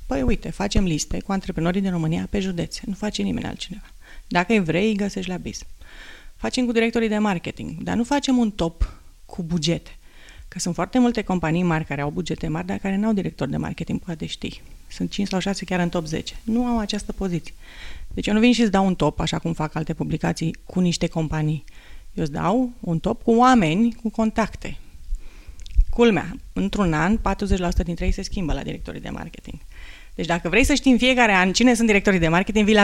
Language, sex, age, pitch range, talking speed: Romanian, female, 30-49, 160-215 Hz, 210 wpm